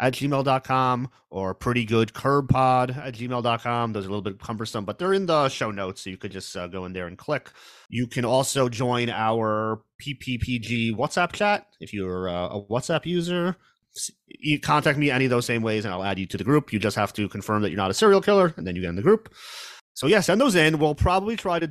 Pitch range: 100-135 Hz